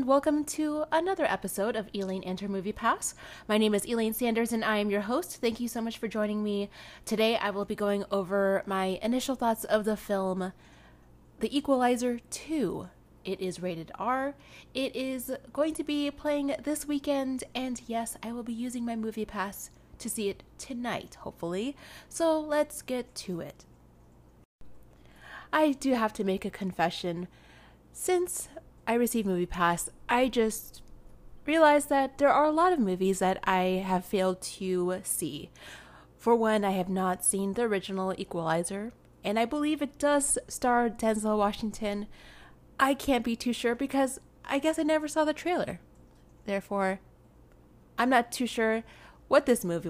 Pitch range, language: 190-265 Hz, English